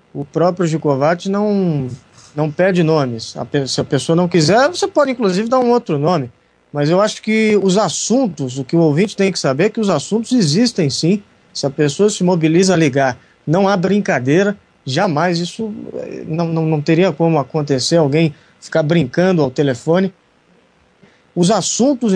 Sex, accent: male, Brazilian